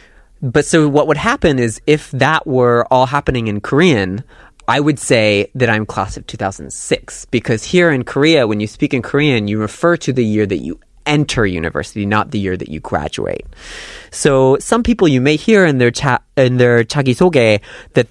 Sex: male